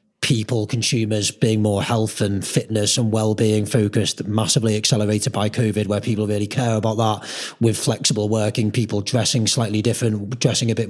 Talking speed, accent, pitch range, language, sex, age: 165 wpm, British, 110-125 Hz, English, male, 30-49